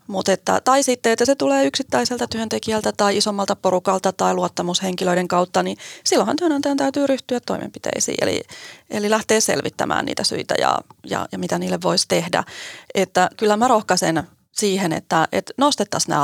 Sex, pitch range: female, 180-240 Hz